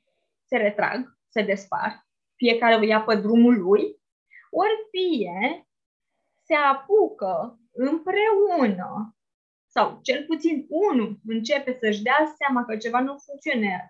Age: 20-39